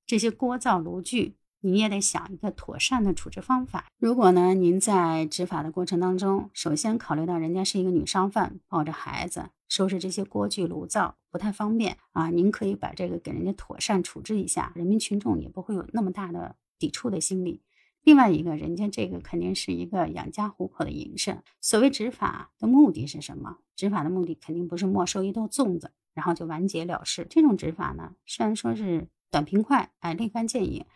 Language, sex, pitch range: Chinese, female, 170-210 Hz